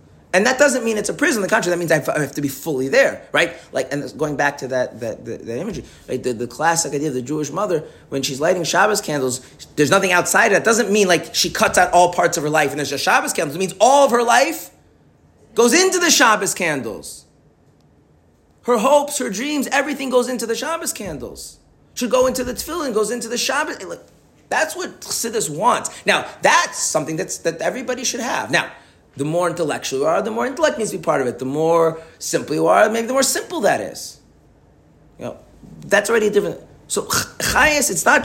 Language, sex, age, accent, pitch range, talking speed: English, male, 30-49, American, 140-230 Hz, 225 wpm